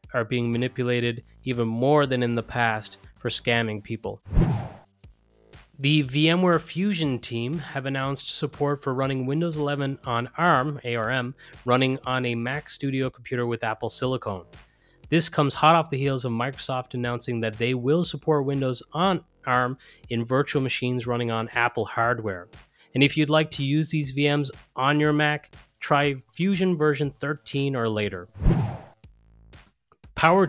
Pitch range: 115-140 Hz